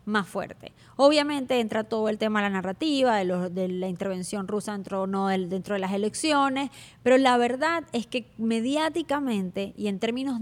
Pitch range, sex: 195-245 Hz, female